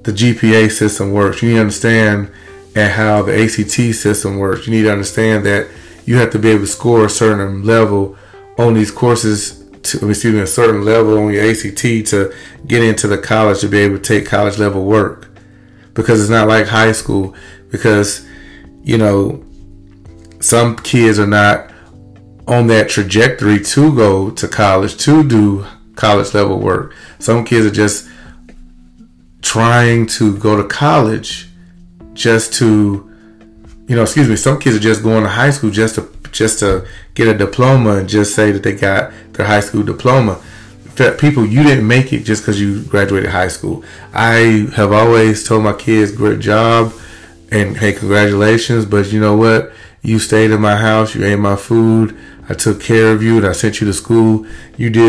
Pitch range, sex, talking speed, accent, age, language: 100-115 Hz, male, 180 wpm, American, 30-49, English